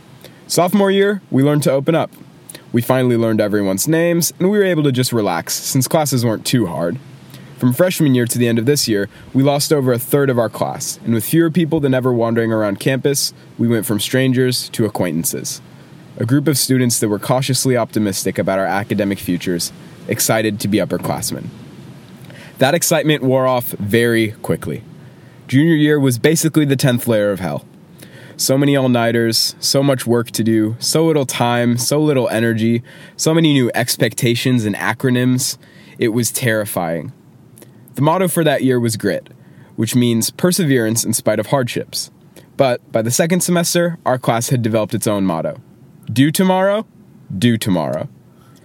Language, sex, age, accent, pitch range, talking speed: English, male, 20-39, American, 110-150 Hz, 175 wpm